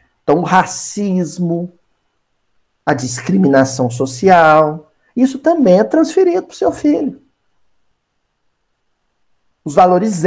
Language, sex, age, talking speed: Portuguese, male, 50-69, 95 wpm